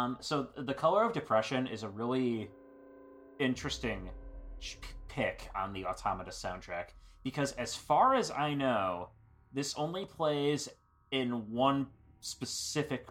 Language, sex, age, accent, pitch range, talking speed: English, male, 30-49, American, 100-130 Hz, 130 wpm